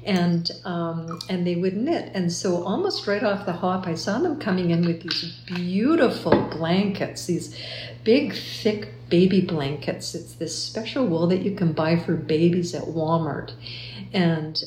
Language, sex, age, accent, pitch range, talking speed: English, female, 50-69, American, 165-190 Hz, 165 wpm